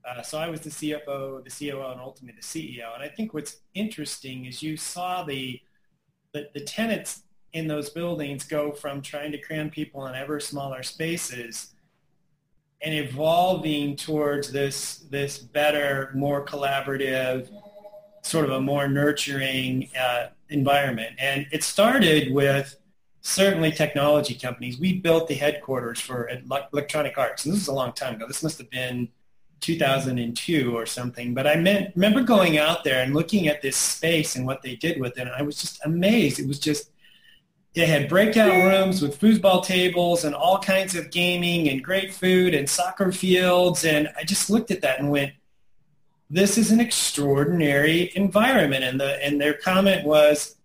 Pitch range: 140-180 Hz